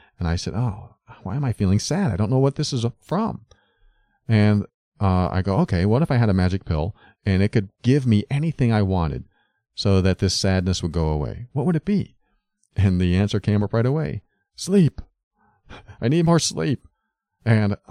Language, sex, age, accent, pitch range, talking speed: English, male, 40-59, American, 85-115 Hz, 200 wpm